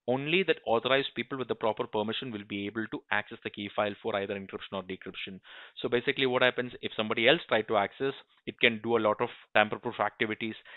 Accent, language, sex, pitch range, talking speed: Indian, English, male, 120-165 Hz, 225 wpm